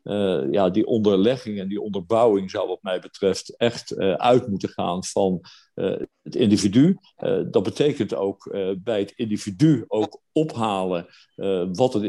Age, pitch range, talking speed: 50-69, 100-115 Hz, 165 wpm